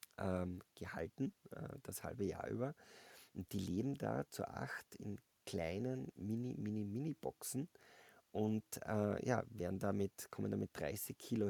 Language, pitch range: German, 95-115 Hz